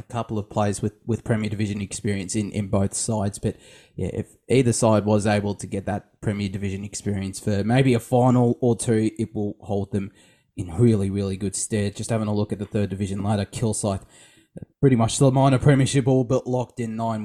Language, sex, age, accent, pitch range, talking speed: English, male, 20-39, Australian, 100-120 Hz, 210 wpm